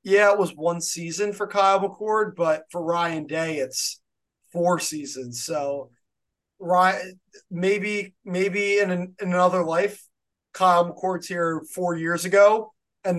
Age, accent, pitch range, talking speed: 20-39, American, 160-195 Hz, 140 wpm